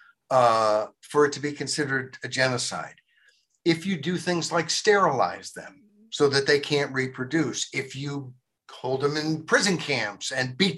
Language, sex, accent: English, male, American